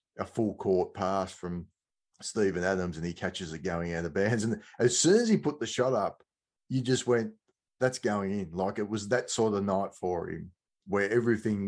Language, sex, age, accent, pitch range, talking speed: English, male, 30-49, Australian, 95-105 Hz, 210 wpm